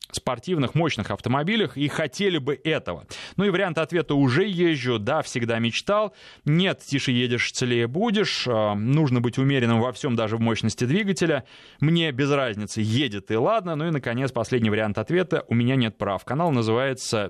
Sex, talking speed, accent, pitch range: male, 170 wpm, native, 110-145 Hz